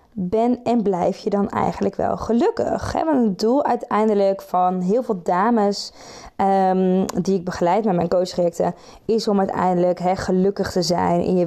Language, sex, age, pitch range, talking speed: Dutch, female, 20-39, 185-230 Hz, 175 wpm